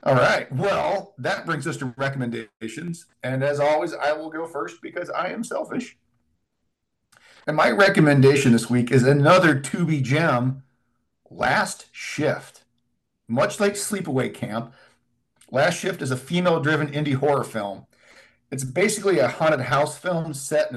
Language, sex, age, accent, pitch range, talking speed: English, male, 40-59, American, 125-155 Hz, 140 wpm